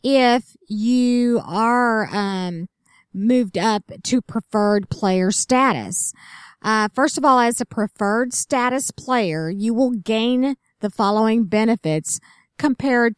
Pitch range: 195-265 Hz